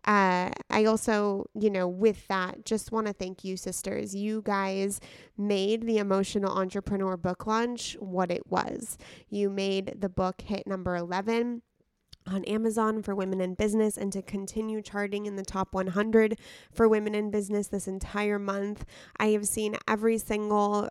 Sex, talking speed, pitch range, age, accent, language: female, 160 wpm, 190-215 Hz, 20-39, American, English